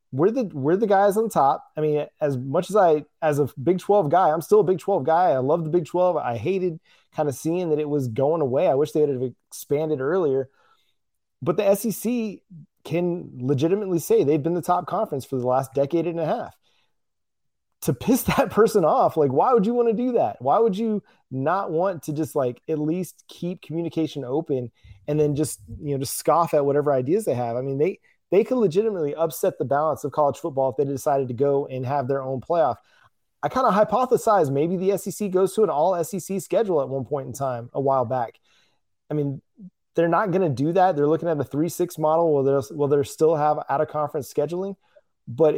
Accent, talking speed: American, 215 wpm